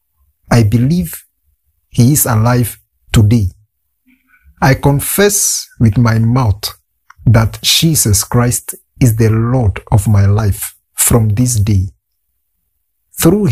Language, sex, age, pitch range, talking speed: English, male, 50-69, 75-130 Hz, 105 wpm